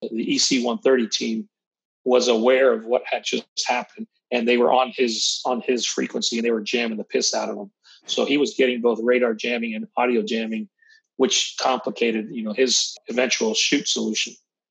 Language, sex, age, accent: English, male, 40-59, American